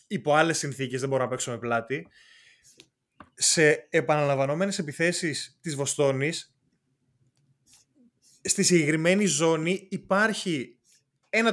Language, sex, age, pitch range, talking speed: Greek, male, 20-39, 145-200 Hz, 100 wpm